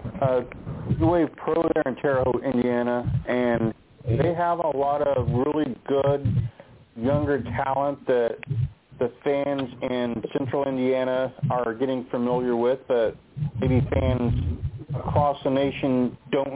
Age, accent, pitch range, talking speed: 40-59, American, 120-140 Hz, 130 wpm